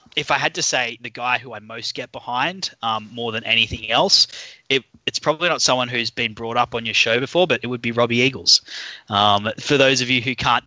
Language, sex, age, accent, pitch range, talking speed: English, male, 20-39, Australian, 110-125 Hz, 235 wpm